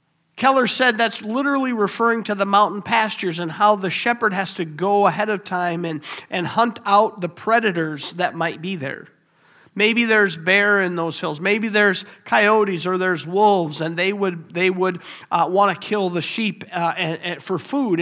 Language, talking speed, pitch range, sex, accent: English, 190 wpm, 170-215 Hz, male, American